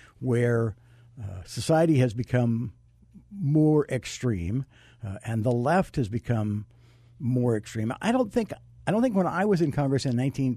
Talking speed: 160 wpm